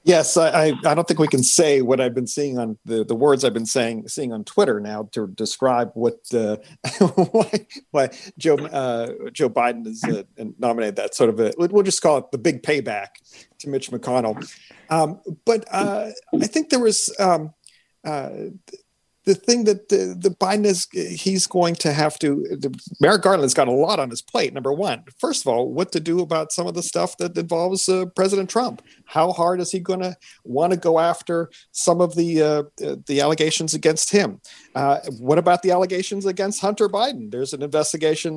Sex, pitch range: male, 130-195 Hz